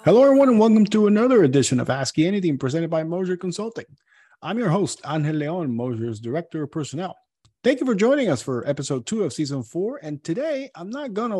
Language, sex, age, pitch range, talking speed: English, male, 40-59, 135-205 Hz, 205 wpm